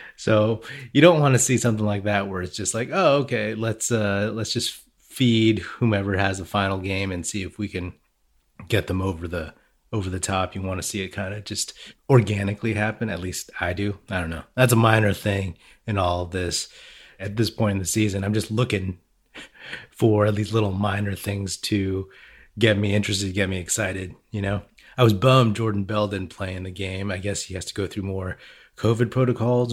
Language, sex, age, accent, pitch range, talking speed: English, male, 30-49, American, 95-115 Hz, 210 wpm